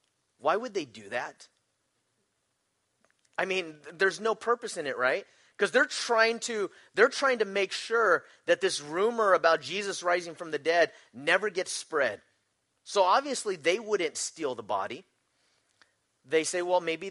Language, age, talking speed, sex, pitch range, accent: English, 30-49, 160 wpm, male, 160-225 Hz, American